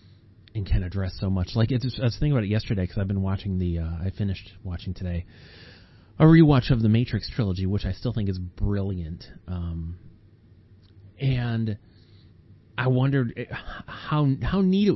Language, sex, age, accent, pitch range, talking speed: English, male, 30-49, American, 95-120 Hz, 170 wpm